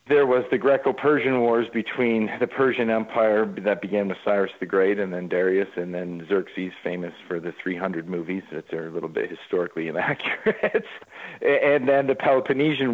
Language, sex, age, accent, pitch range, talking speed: English, male, 40-59, American, 95-110 Hz, 170 wpm